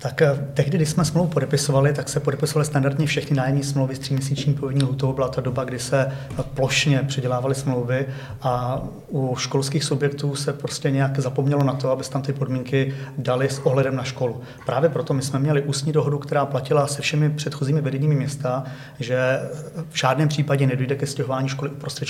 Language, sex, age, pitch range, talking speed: Czech, male, 30-49, 130-145 Hz, 185 wpm